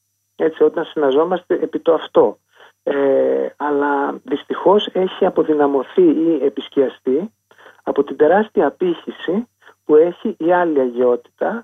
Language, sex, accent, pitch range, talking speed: Greek, male, native, 125-200 Hz, 115 wpm